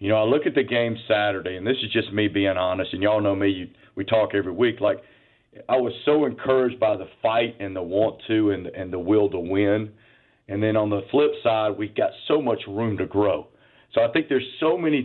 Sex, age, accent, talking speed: male, 40-59, American, 245 wpm